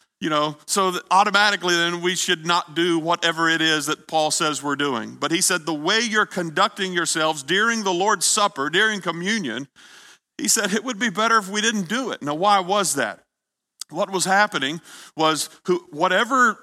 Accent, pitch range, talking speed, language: American, 165-195 Hz, 190 wpm, English